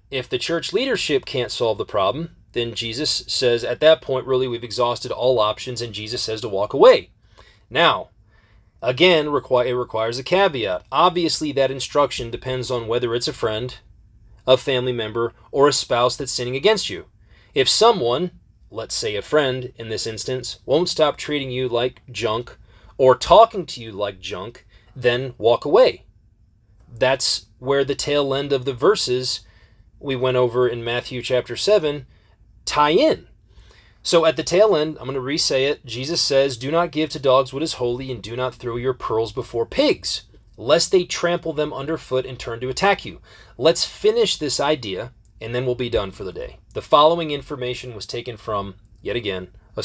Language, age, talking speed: English, 30-49, 180 wpm